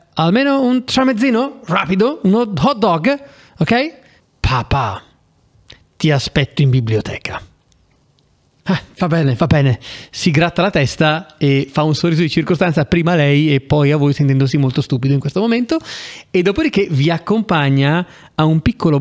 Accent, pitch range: native, 140-185 Hz